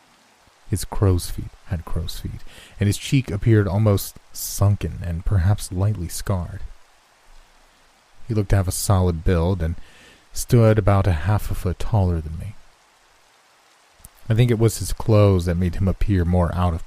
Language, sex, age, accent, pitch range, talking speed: English, male, 30-49, American, 85-105 Hz, 165 wpm